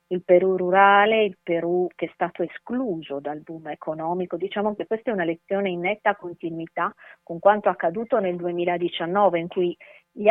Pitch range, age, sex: 170-195 Hz, 40-59, female